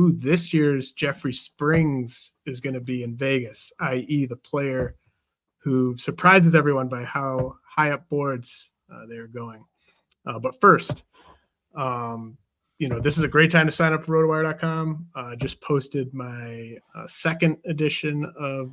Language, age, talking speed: English, 30-49, 160 wpm